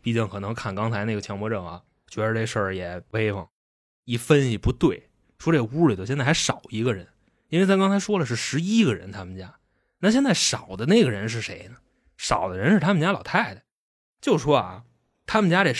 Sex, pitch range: male, 100-160 Hz